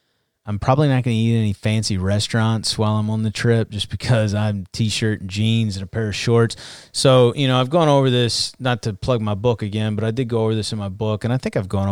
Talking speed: 260 wpm